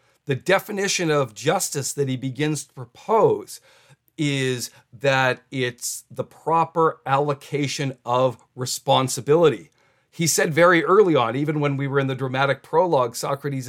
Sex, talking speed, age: male, 135 wpm, 50-69